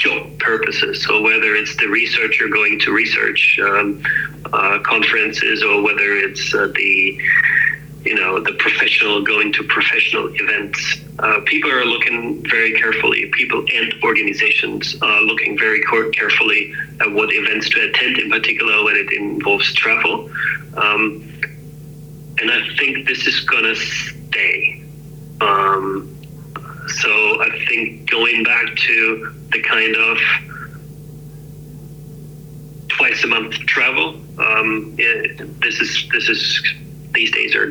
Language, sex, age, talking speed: Swedish, male, 40-59, 130 wpm